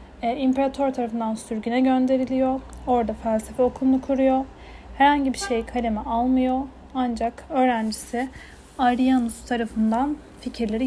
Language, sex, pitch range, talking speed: Turkish, female, 230-265 Hz, 100 wpm